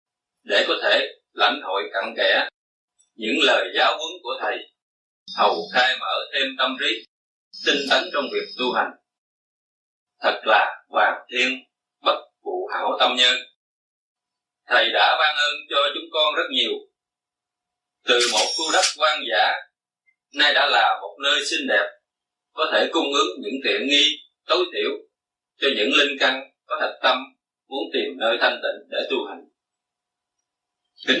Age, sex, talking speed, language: 20-39, male, 160 wpm, Vietnamese